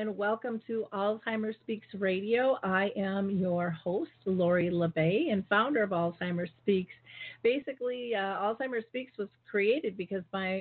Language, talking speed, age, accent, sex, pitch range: English, 140 wpm, 40-59, American, female, 185-205 Hz